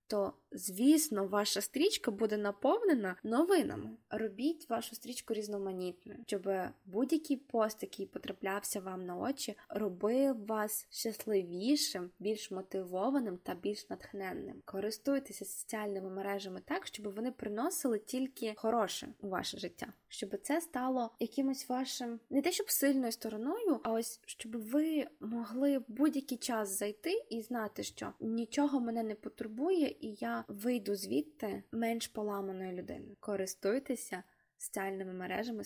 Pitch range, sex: 195-255 Hz, female